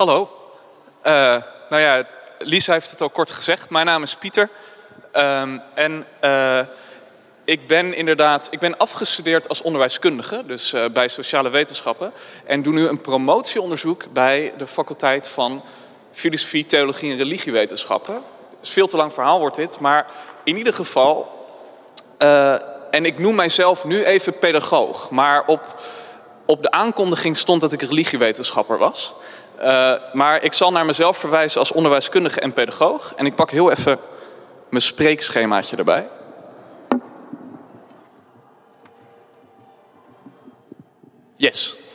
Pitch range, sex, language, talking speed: 140-170 Hz, male, Dutch, 130 wpm